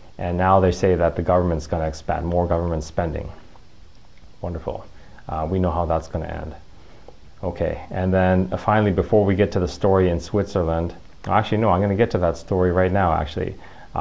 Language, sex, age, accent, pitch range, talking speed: English, male, 30-49, American, 85-105 Hz, 195 wpm